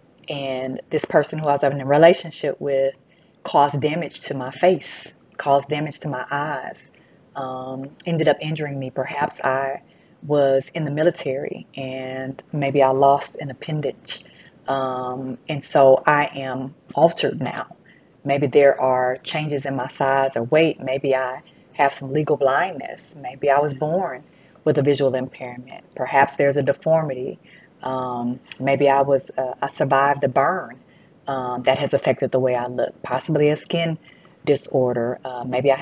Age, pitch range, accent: 30-49, 130-150 Hz, American